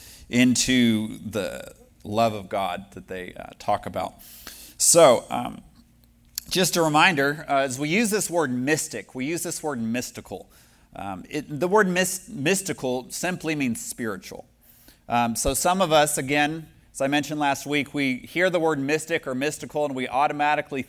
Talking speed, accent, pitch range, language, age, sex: 160 wpm, American, 125-160 Hz, English, 30-49, male